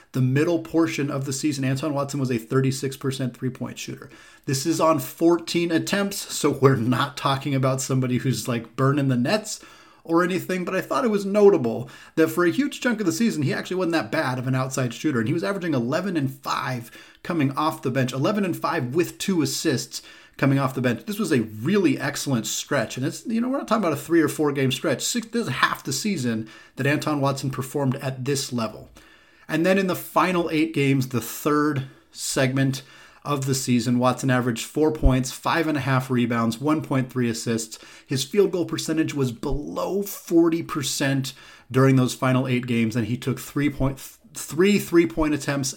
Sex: male